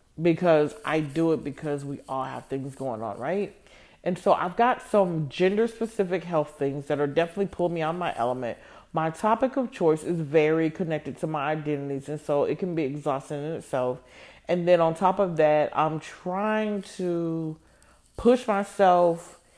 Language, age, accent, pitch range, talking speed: English, 40-59, American, 145-175 Hz, 175 wpm